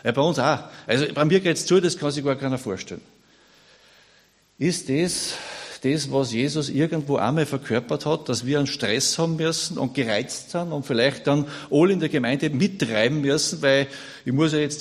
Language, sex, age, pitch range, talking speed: German, male, 50-69, 130-165 Hz, 195 wpm